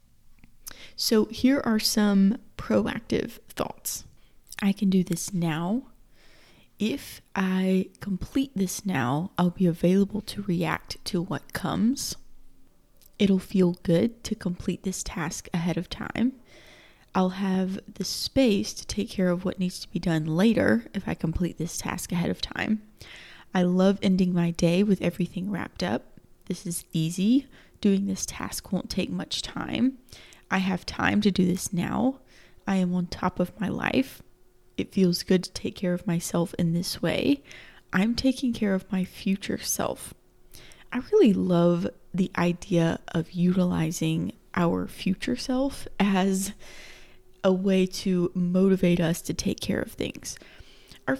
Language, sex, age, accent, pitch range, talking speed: English, female, 20-39, American, 175-210 Hz, 150 wpm